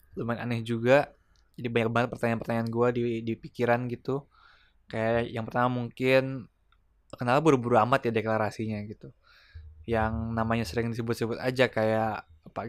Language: Indonesian